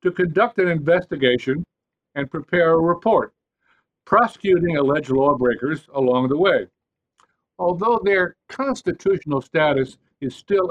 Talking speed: 110 wpm